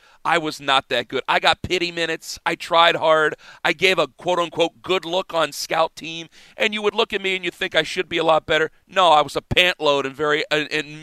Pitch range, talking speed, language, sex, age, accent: 165-200 Hz, 240 wpm, English, male, 40-59, American